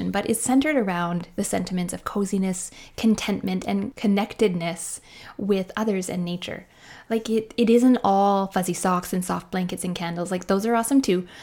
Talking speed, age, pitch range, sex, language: 170 wpm, 20-39, 185-235 Hz, female, English